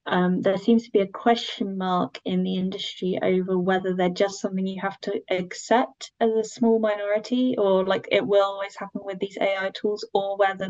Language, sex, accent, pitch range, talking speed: English, female, British, 185-210 Hz, 200 wpm